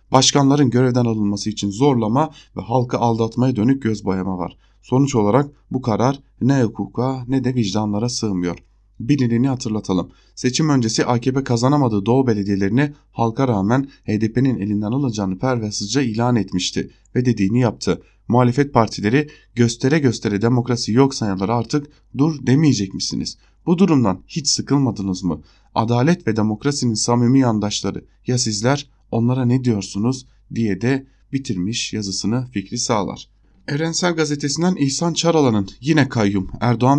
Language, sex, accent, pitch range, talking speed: German, male, Turkish, 105-135 Hz, 130 wpm